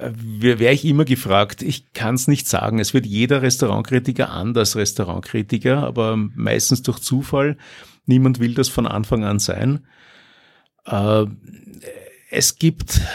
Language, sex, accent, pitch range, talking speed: German, male, Austrian, 110-130 Hz, 130 wpm